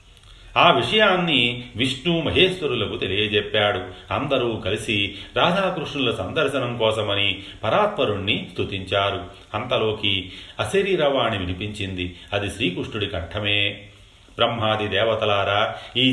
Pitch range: 95-115 Hz